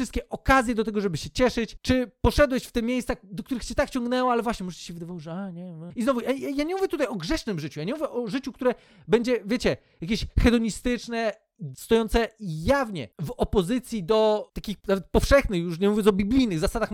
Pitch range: 205-255 Hz